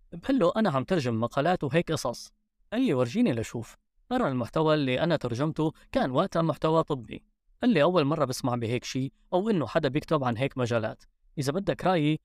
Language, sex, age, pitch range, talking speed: Arabic, female, 20-39, 130-180 Hz, 180 wpm